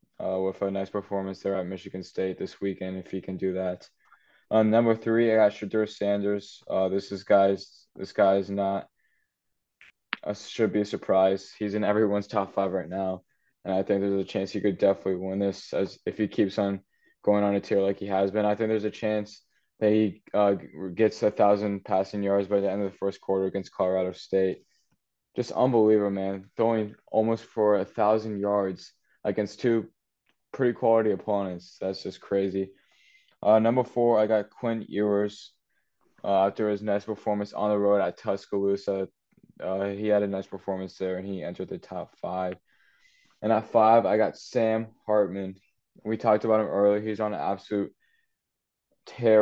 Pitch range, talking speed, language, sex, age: 95-105 Hz, 190 wpm, English, male, 10-29